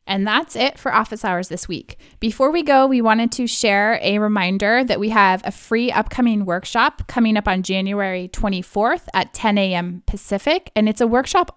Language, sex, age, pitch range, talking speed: English, female, 20-39, 180-225 Hz, 190 wpm